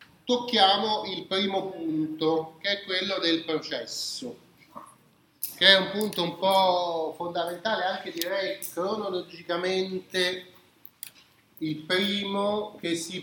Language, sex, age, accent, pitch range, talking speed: Italian, male, 30-49, native, 155-200 Hz, 105 wpm